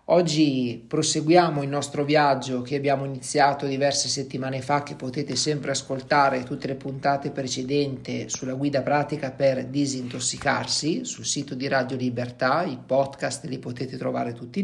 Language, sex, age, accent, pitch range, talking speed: Italian, male, 40-59, native, 135-165 Hz, 145 wpm